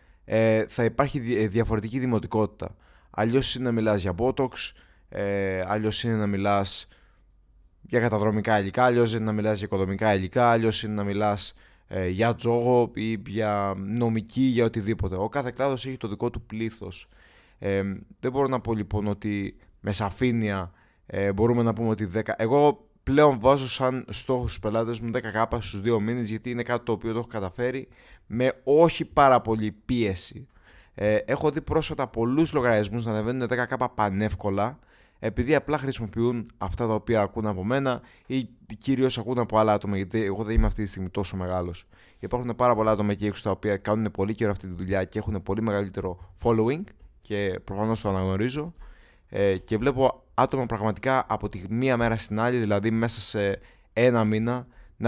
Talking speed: 175 wpm